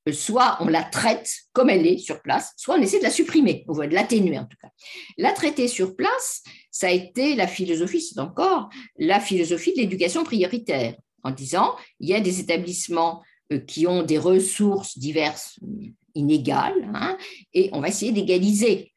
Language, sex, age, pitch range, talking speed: French, female, 50-69, 160-250 Hz, 175 wpm